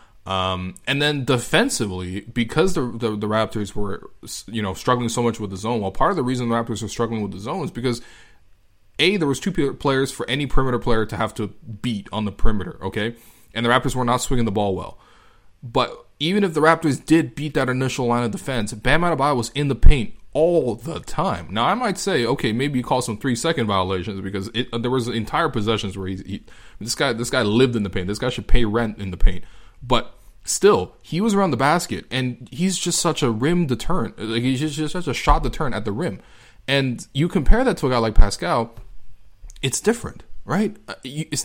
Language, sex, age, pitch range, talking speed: English, male, 20-39, 105-140 Hz, 225 wpm